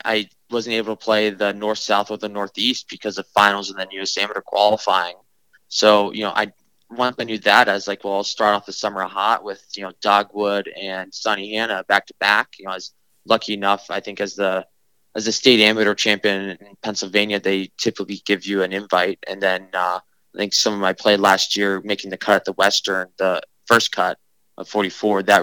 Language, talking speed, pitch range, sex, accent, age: English, 215 wpm, 100-110 Hz, male, American, 20-39